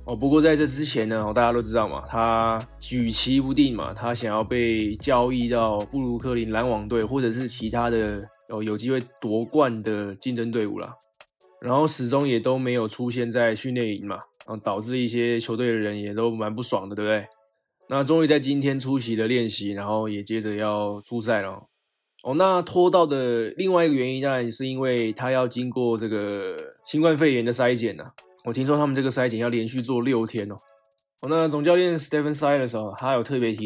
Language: Chinese